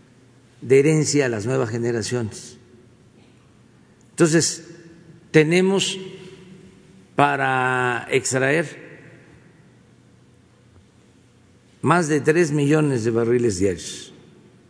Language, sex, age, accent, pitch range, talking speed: Spanish, male, 50-69, Mexican, 125-165 Hz, 70 wpm